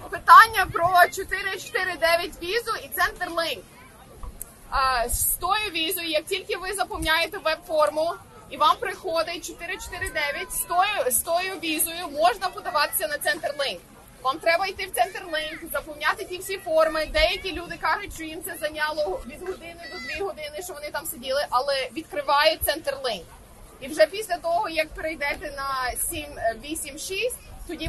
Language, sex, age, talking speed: Ukrainian, female, 20-39, 140 wpm